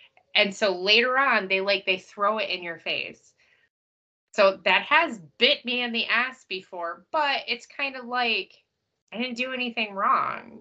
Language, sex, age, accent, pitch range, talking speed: English, female, 20-39, American, 205-270 Hz, 175 wpm